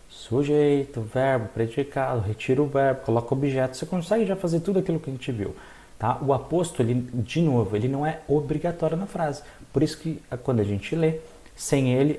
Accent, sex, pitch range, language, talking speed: Brazilian, male, 115-165 Hz, Portuguese, 195 wpm